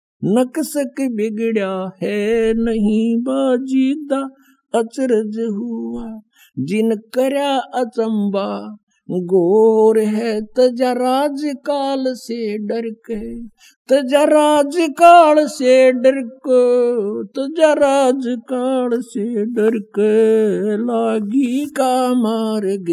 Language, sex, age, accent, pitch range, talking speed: Hindi, male, 60-79, native, 220-260 Hz, 75 wpm